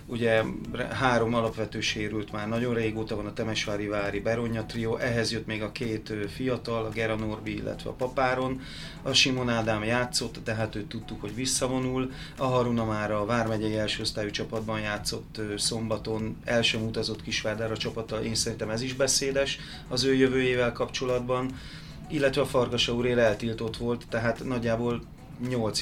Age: 30-49